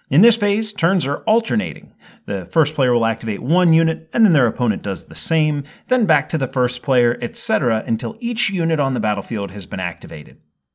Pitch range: 125-185 Hz